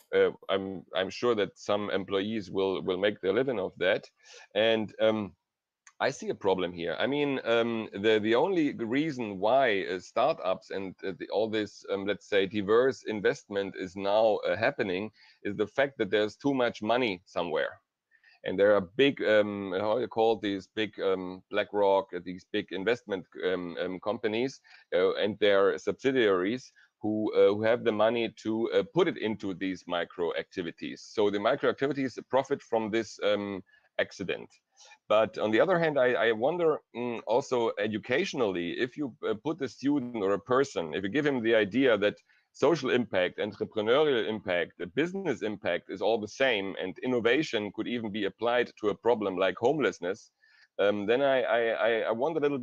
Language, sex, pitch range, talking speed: English, male, 100-130 Hz, 170 wpm